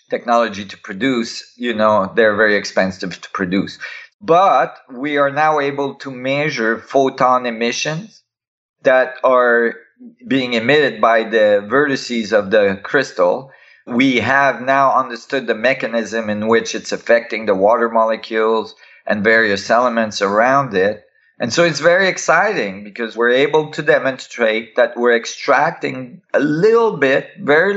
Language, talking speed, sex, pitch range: English, 140 wpm, male, 120-150 Hz